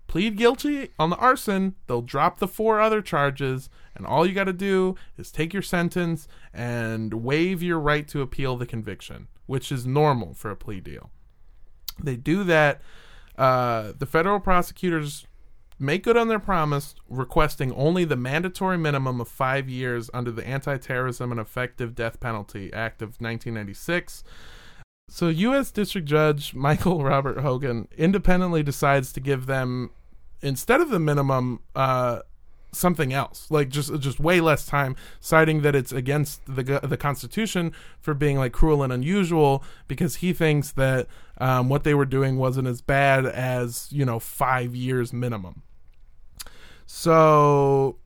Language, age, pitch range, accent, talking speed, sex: English, 20-39, 125-160 Hz, American, 155 wpm, male